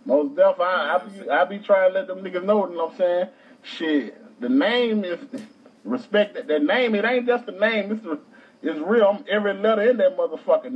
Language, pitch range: English, 205-280 Hz